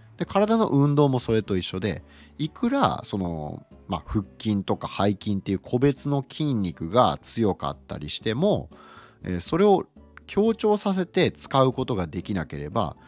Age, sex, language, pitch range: 40-59, male, Japanese, 85-140 Hz